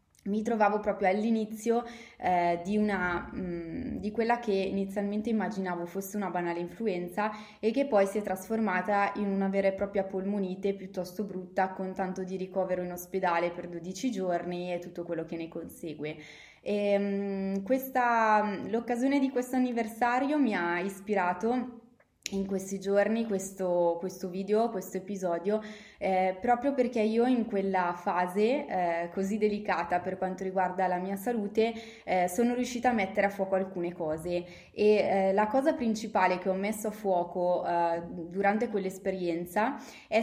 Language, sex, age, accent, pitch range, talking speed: Italian, female, 20-39, native, 185-220 Hz, 155 wpm